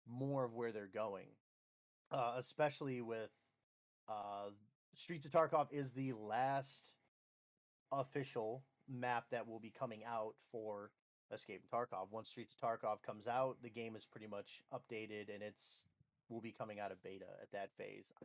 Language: English